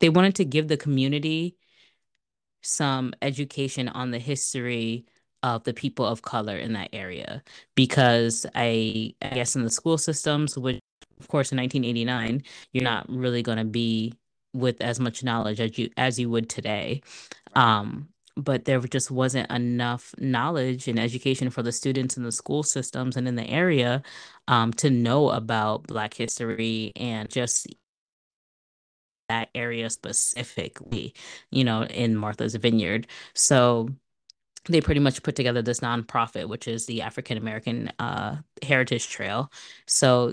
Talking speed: 145 wpm